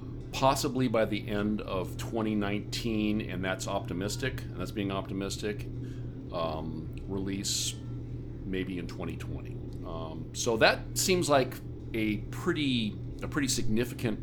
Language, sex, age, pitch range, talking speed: English, male, 40-59, 100-125 Hz, 145 wpm